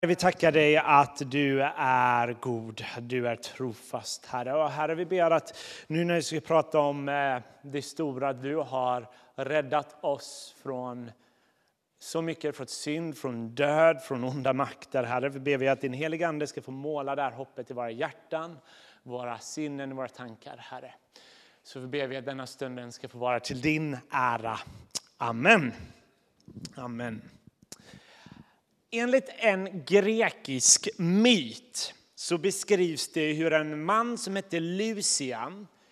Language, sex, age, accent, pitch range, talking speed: Swedish, male, 30-49, native, 130-170 Hz, 140 wpm